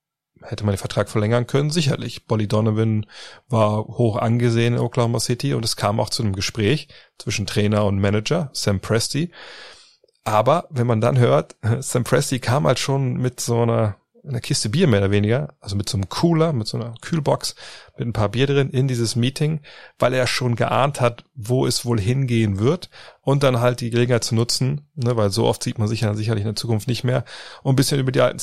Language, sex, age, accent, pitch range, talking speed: German, male, 30-49, German, 110-130 Hz, 215 wpm